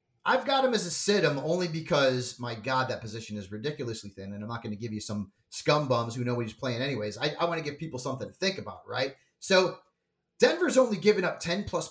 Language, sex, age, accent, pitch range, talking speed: English, male, 30-49, American, 130-200 Hz, 240 wpm